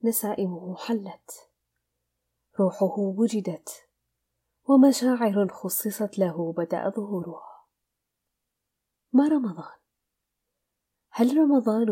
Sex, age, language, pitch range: female, 30-49, Arabic, 180-225 Hz